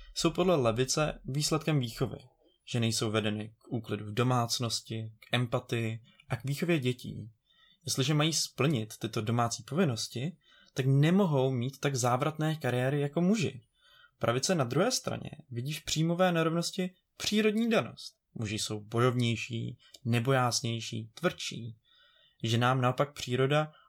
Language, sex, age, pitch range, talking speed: Czech, male, 20-39, 120-165 Hz, 130 wpm